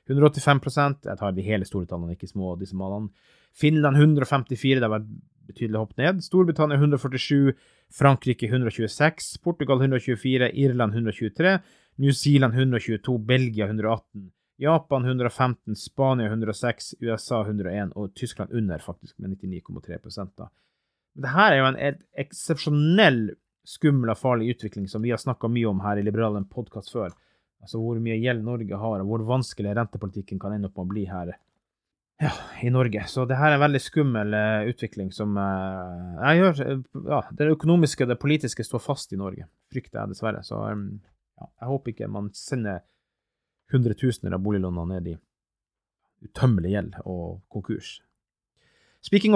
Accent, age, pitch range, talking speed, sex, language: Norwegian, 30-49, 105-140 Hz, 145 wpm, male, English